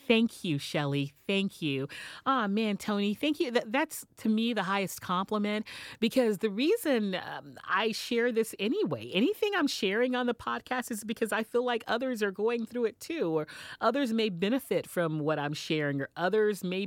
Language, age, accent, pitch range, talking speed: English, 40-59, American, 155-220 Hz, 185 wpm